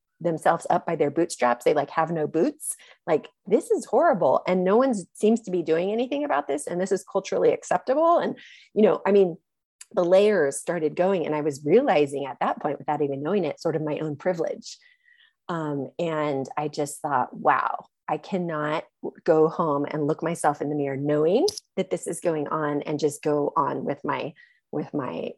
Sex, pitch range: female, 150-190 Hz